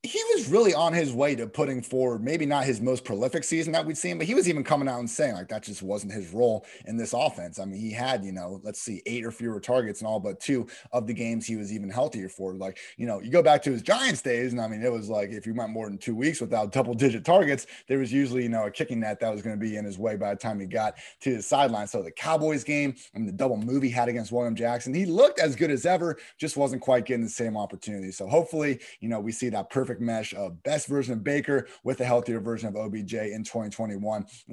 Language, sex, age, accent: English, male, 30-49, American